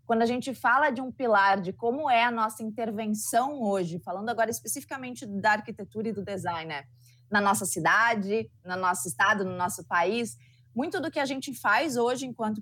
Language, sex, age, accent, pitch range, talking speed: Portuguese, female, 20-39, Brazilian, 190-250 Hz, 190 wpm